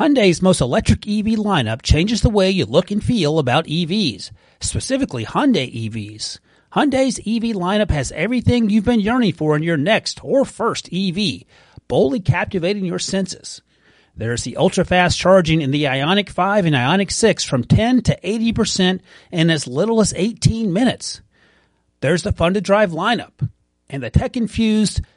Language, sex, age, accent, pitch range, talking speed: English, male, 40-59, American, 140-210 Hz, 155 wpm